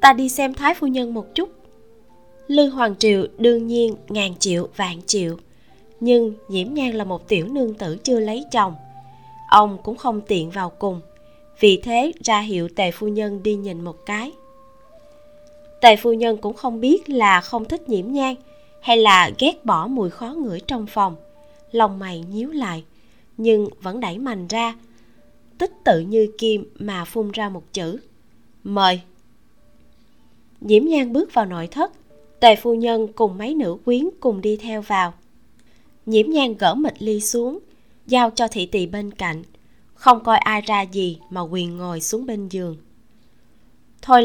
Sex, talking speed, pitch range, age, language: female, 170 wpm, 190-255 Hz, 20-39, Vietnamese